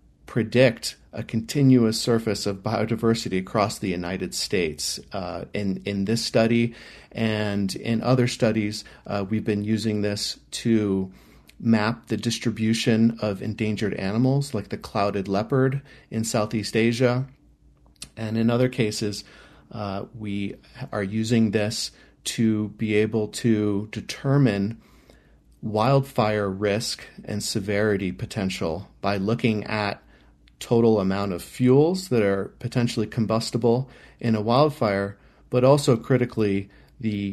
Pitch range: 100-115 Hz